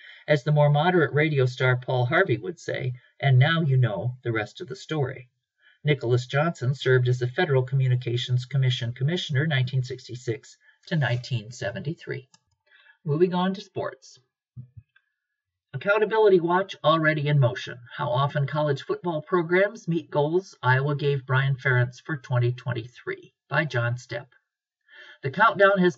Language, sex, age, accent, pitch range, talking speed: English, male, 50-69, American, 125-170 Hz, 135 wpm